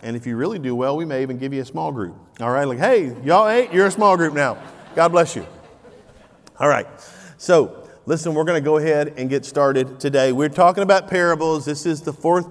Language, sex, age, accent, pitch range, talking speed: English, male, 40-59, American, 135-165 Hz, 235 wpm